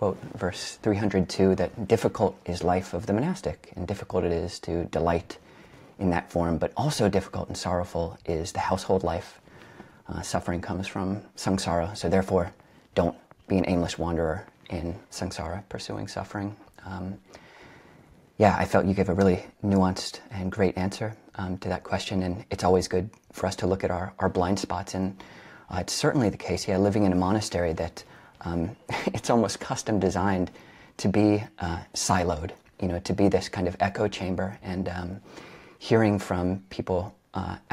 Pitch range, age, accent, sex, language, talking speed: 90-100 Hz, 30-49, American, male, English, 170 wpm